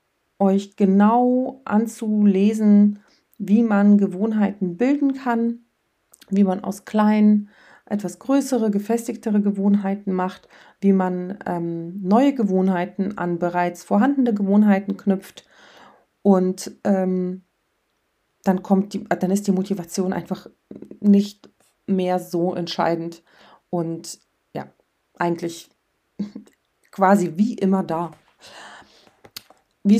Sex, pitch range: female, 185-220 Hz